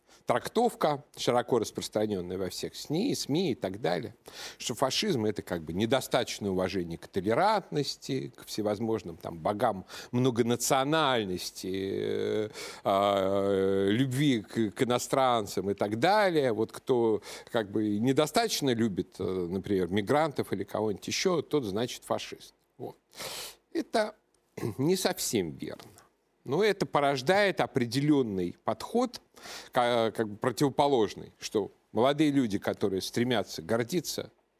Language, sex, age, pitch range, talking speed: Russian, male, 50-69, 100-140 Hz, 115 wpm